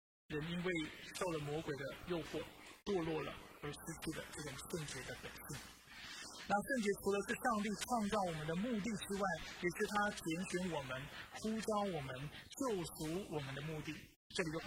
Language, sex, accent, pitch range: Chinese, male, native, 160-225 Hz